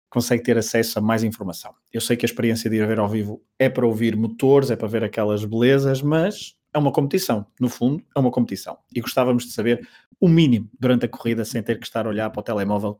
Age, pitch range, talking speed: 20-39, 110-130 Hz, 240 wpm